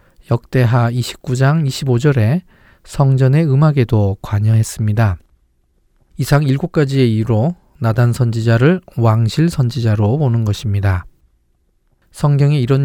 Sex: male